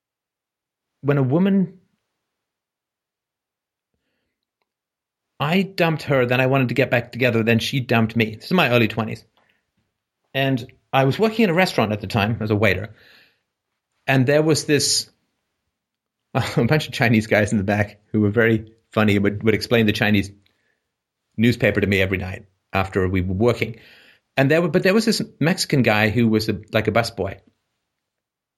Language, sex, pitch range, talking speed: English, male, 105-135 Hz, 170 wpm